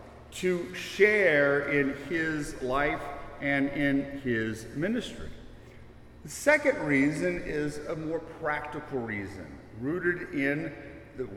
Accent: American